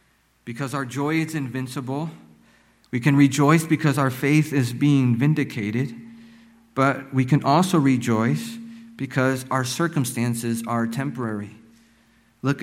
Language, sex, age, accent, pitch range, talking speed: English, male, 50-69, American, 120-150 Hz, 120 wpm